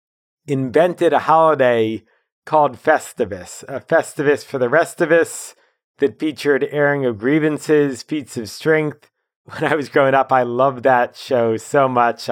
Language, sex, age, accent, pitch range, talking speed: English, male, 40-59, American, 125-165 Hz, 150 wpm